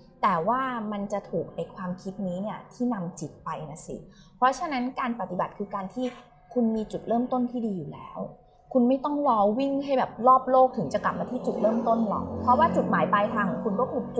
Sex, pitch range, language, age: female, 195-255 Hz, Thai, 20-39